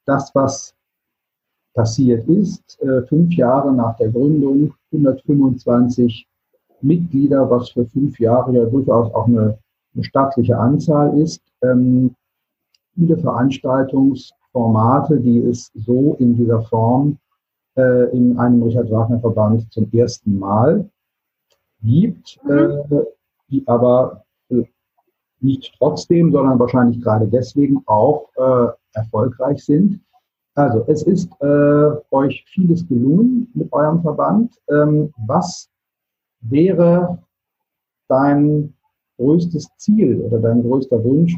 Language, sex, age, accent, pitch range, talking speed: German, male, 50-69, German, 120-145 Hz, 110 wpm